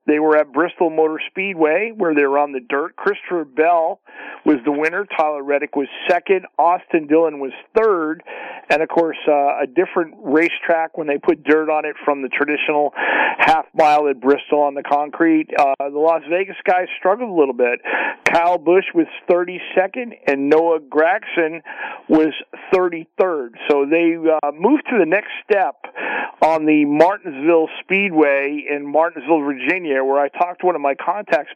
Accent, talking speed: American, 165 wpm